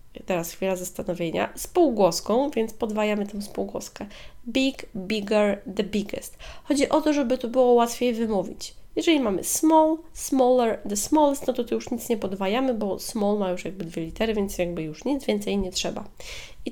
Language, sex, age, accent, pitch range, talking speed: Polish, female, 20-39, native, 210-260 Hz, 170 wpm